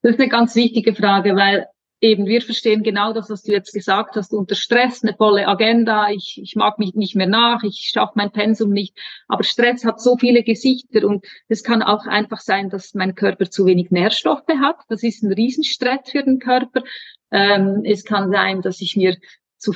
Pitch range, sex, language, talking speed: 200-245 Hz, female, German, 205 wpm